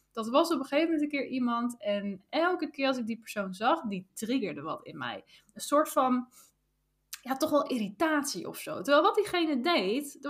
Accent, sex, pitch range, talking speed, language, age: Dutch, female, 205-305 Hz, 210 wpm, Dutch, 10-29